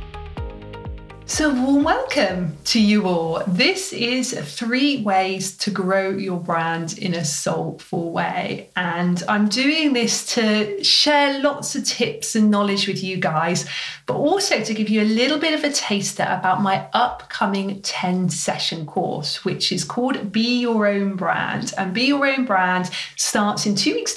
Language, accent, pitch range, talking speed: English, British, 190-240 Hz, 160 wpm